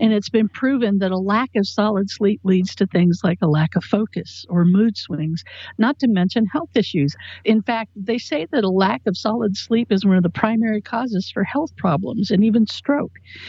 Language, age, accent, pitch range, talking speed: English, 60-79, American, 195-255 Hz, 215 wpm